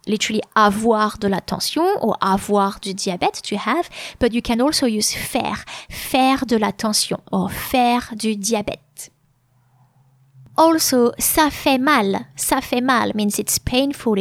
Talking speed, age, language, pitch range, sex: 150 wpm, 20-39, English, 195-250 Hz, female